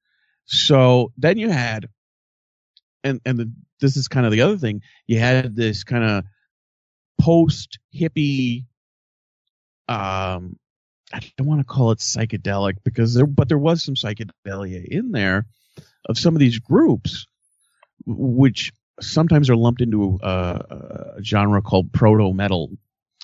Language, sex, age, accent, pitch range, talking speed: English, male, 40-59, American, 100-125 Hz, 140 wpm